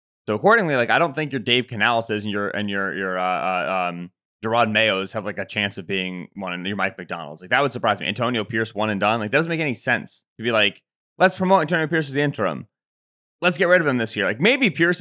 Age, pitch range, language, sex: 20-39, 105-140 Hz, English, male